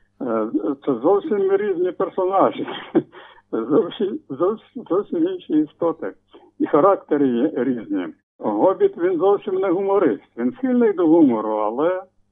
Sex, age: male, 60-79